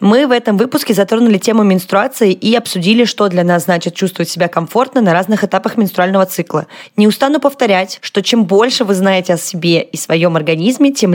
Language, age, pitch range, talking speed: Russian, 20-39, 185-230 Hz, 190 wpm